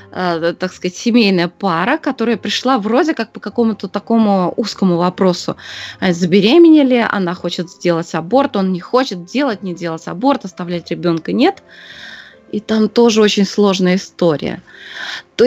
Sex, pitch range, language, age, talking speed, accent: female, 195-265 Hz, Russian, 20-39, 140 wpm, native